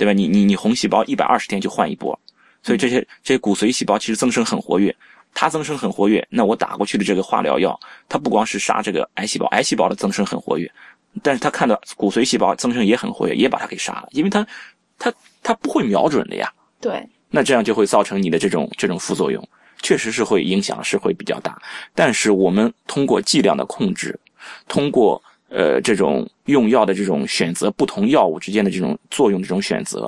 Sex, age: male, 20-39